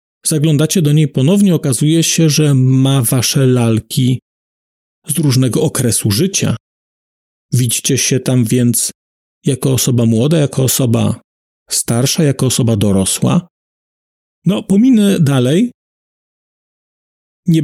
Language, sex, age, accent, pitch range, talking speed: Polish, male, 40-59, native, 125-170 Hz, 105 wpm